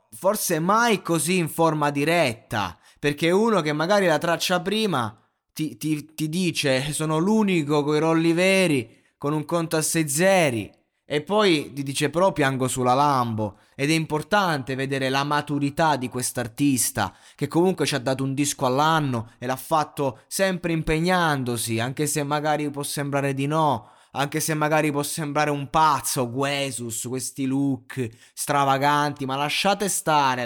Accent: native